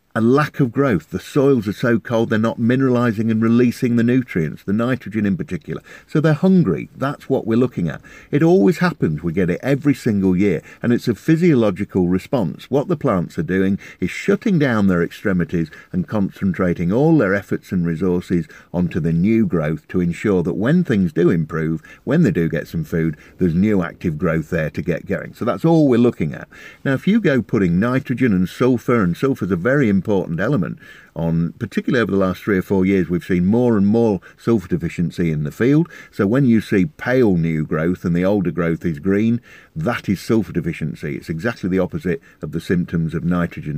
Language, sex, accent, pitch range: English, male, British, 90-120 Hz